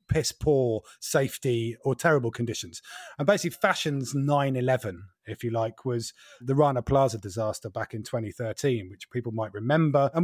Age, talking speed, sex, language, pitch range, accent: 30-49, 145 wpm, male, English, 120-155 Hz, British